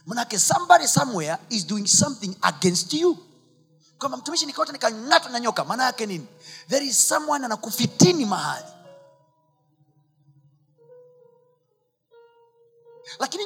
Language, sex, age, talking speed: Swahili, male, 30-49, 105 wpm